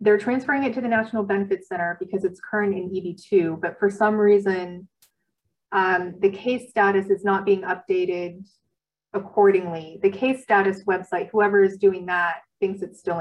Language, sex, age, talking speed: English, female, 20-39, 170 wpm